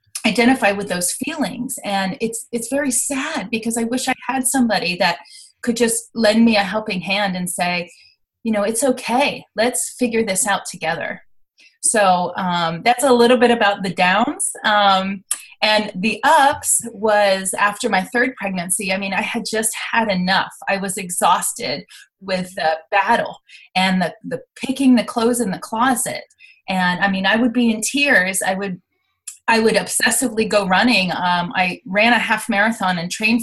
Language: English